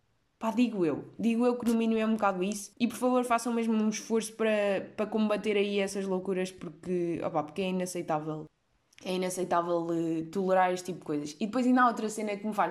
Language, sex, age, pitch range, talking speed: Portuguese, female, 20-39, 190-240 Hz, 210 wpm